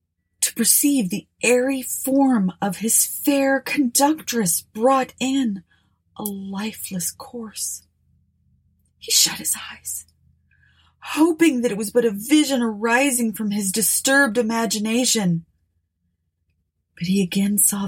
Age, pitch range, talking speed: 30-49, 145-220 Hz, 110 wpm